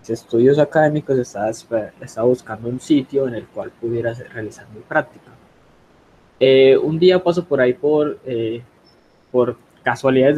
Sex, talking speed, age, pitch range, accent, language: male, 140 wpm, 20-39, 120-140 Hz, Colombian, Spanish